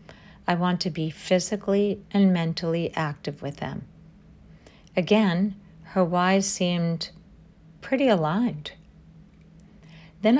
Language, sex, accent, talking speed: English, female, American, 100 wpm